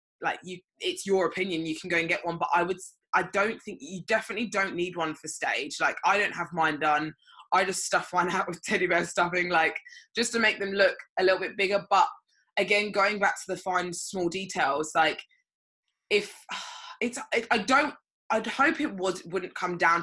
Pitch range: 170-225 Hz